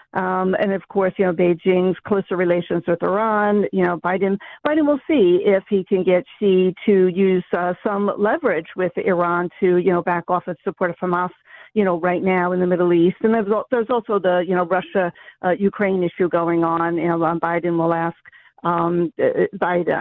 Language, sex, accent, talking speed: English, female, American, 200 wpm